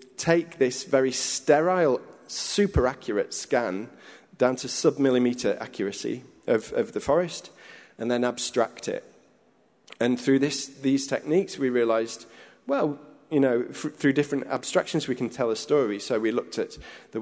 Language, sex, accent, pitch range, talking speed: English, male, British, 120-135 Hz, 150 wpm